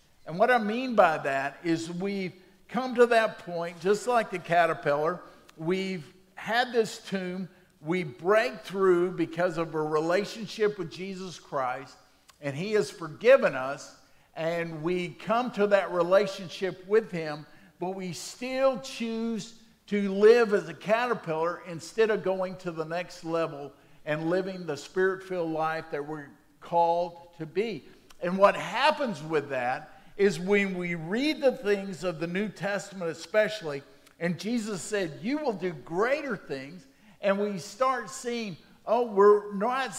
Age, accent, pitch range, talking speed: 50-69, American, 170-225 Hz, 150 wpm